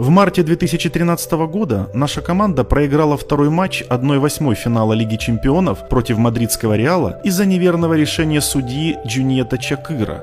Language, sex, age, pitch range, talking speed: Russian, male, 30-49, 110-155 Hz, 130 wpm